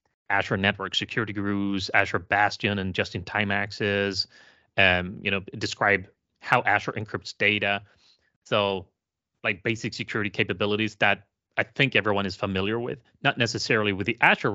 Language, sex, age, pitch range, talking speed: English, male, 30-49, 95-115 Hz, 130 wpm